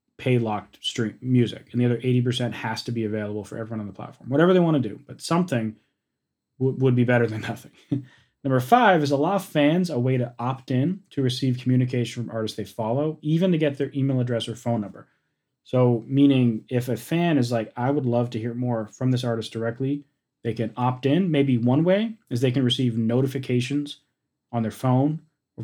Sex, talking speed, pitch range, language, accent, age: male, 200 wpm, 115-140 Hz, English, American, 30-49